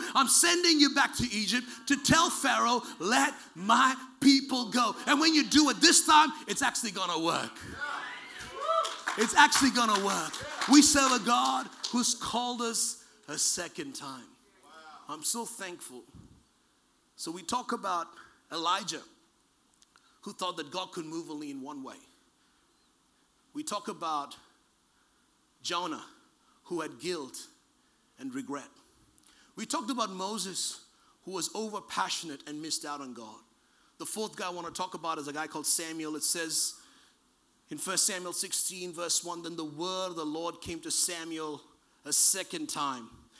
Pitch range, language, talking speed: 165-270 Hz, English, 155 wpm